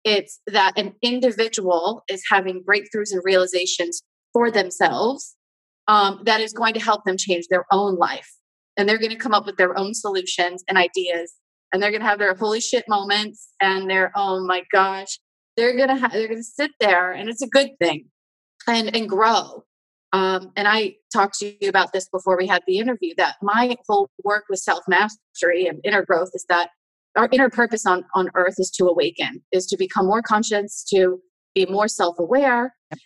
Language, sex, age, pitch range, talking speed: English, female, 30-49, 185-225 Hz, 195 wpm